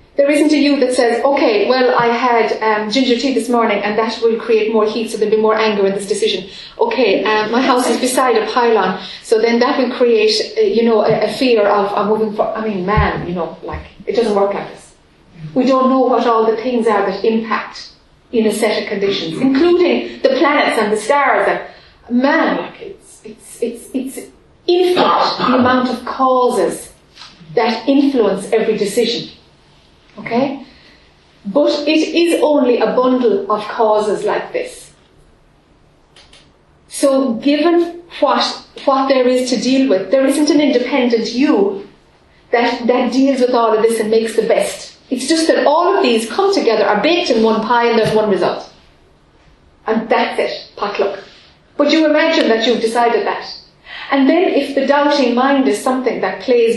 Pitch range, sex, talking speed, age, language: 220-275 Hz, female, 185 wpm, 30-49, English